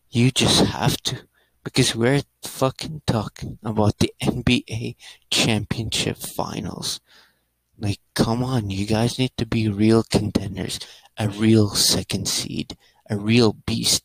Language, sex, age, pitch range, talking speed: English, male, 30-49, 95-115 Hz, 130 wpm